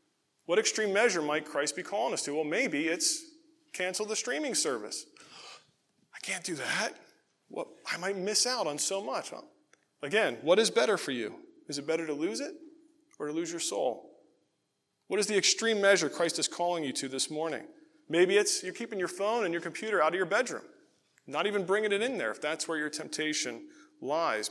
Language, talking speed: English, 200 wpm